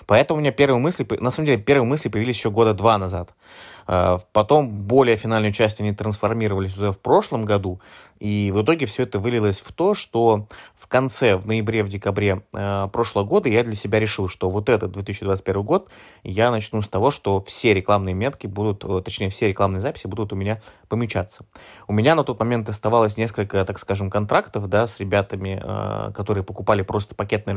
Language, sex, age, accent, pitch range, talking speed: Russian, male, 20-39, native, 100-115 Hz, 185 wpm